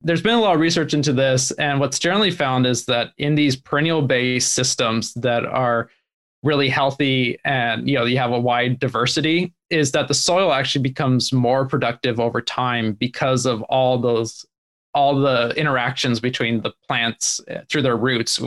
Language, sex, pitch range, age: English, male, 125-145 Hz, 20-39